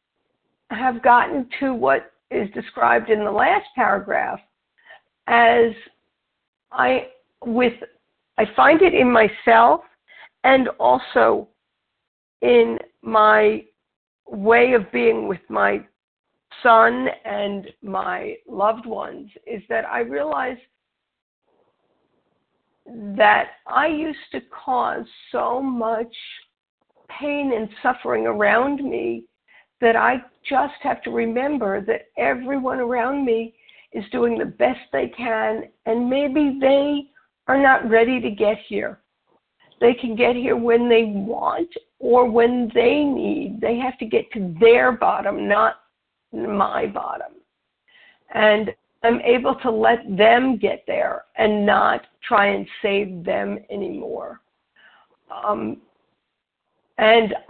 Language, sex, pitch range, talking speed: English, female, 225-270 Hz, 115 wpm